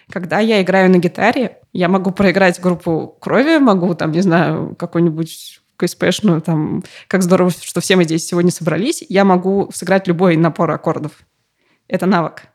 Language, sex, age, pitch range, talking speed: Russian, female, 20-39, 170-200 Hz, 165 wpm